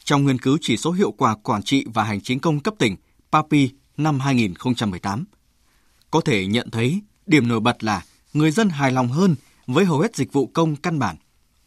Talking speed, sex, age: 200 wpm, male, 20-39